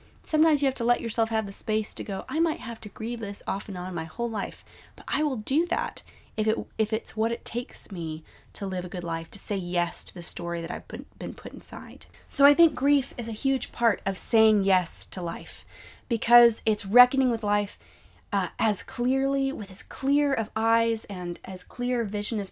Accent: American